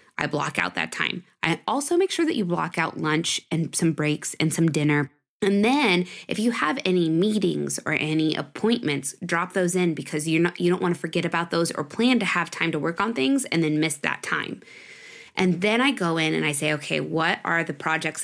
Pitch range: 155-200 Hz